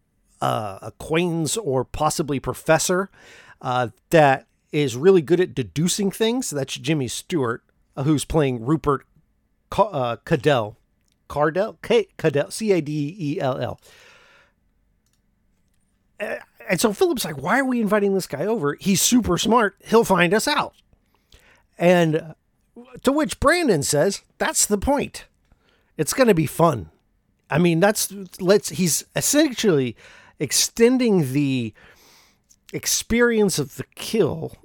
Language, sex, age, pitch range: English, male, 50-69, 130-195 Hz